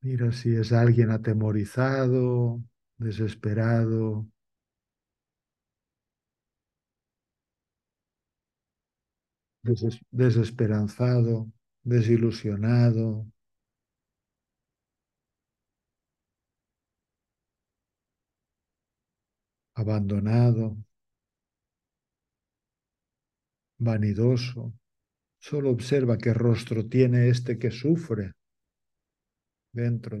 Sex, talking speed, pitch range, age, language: male, 40 wpm, 105-125 Hz, 60-79, Spanish